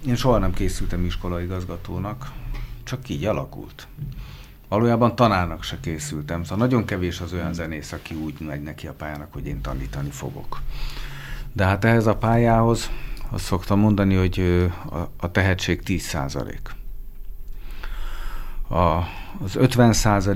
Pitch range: 80-105 Hz